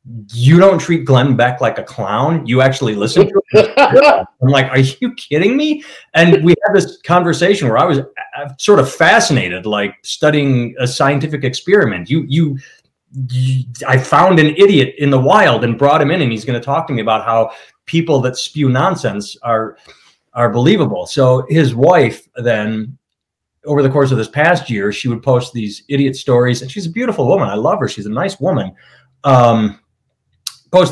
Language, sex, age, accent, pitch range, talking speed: English, male, 30-49, American, 115-150 Hz, 185 wpm